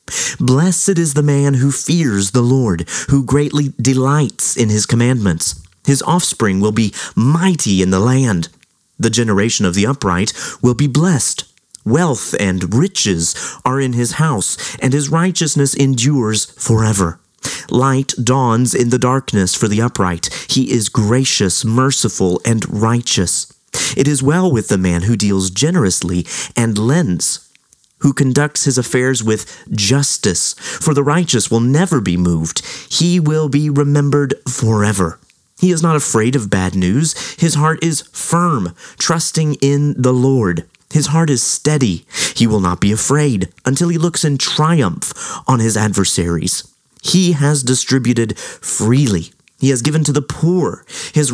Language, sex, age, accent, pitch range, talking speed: English, male, 30-49, American, 105-145 Hz, 150 wpm